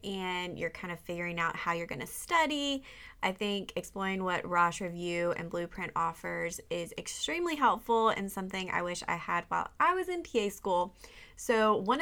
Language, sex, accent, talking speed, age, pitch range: English, female, American, 180 wpm, 20-39, 185-245 Hz